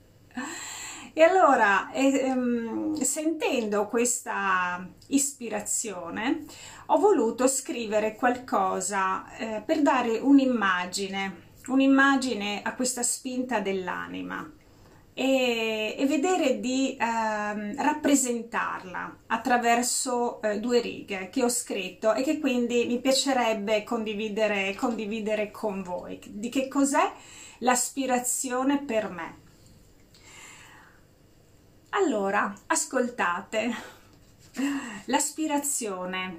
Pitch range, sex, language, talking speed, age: 195-265 Hz, female, Italian, 80 wpm, 30-49